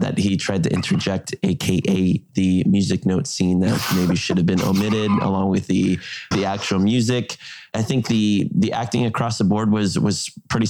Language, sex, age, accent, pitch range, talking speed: English, male, 20-39, American, 95-115 Hz, 185 wpm